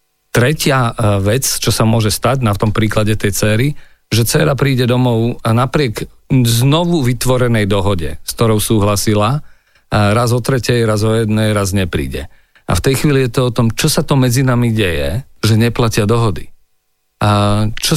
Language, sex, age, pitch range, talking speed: Slovak, male, 40-59, 105-125 Hz, 170 wpm